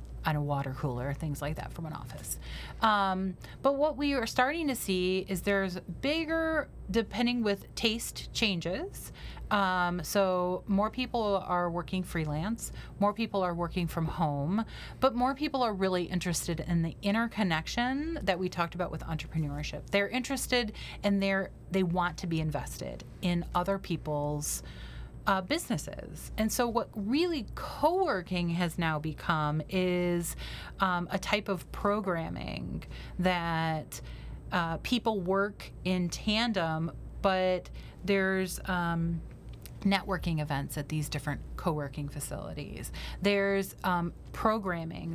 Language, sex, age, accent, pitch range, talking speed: English, female, 30-49, American, 165-205 Hz, 135 wpm